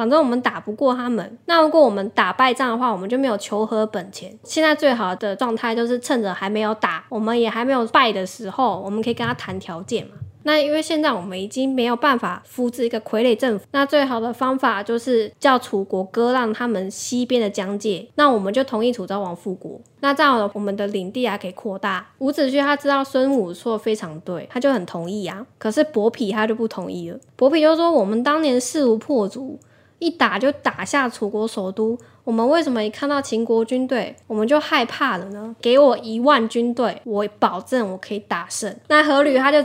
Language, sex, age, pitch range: Chinese, female, 10-29, 210-270 Hz